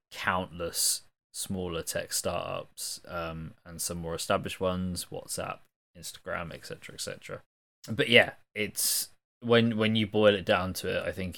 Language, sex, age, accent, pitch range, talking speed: English, male, 20-39, British, 85-105 Hz, 140 wpm